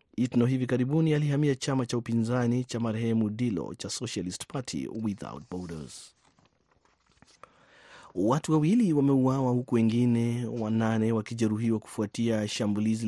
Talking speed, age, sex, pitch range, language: 115 wpm, 30-49, male, 95-115 Hz, Swahili